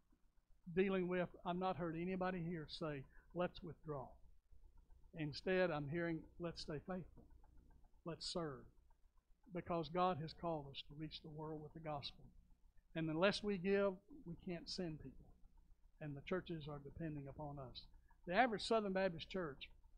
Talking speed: 150 wpm